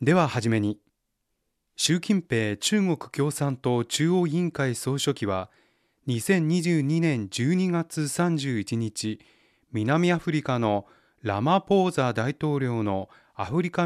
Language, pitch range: Japanese, 115-170 Hz